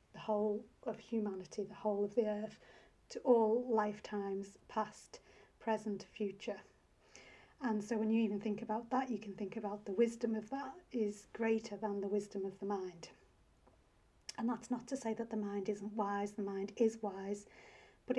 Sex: female